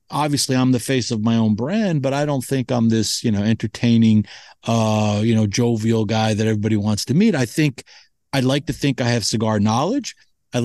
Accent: American